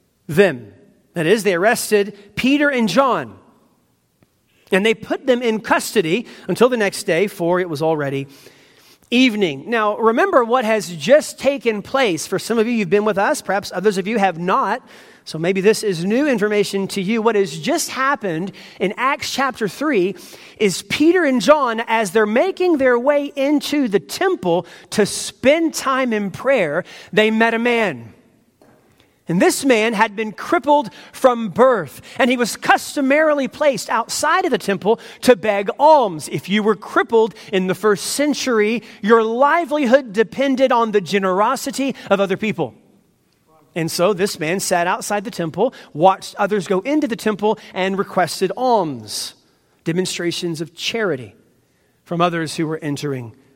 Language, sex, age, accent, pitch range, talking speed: English, male, 40-59, American, 190-260 Hz, 160 wpm